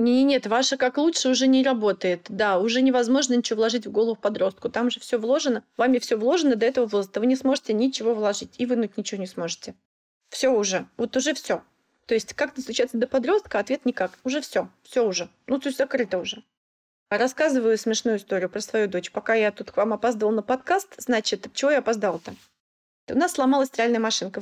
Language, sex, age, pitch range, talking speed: Russian, female, 20-39, 225-280 Hz, 195 wpm